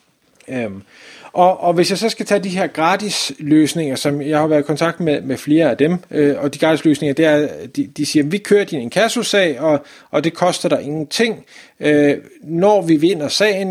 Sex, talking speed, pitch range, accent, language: male, 205 wpm, 145-185 Hz, native, Danish